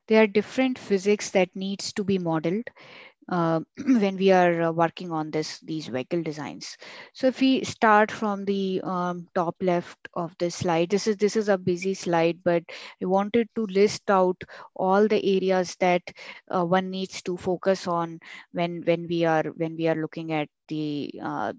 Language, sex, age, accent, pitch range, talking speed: English, female, 20-39, Indian, 170-195 Hz, 180 wpm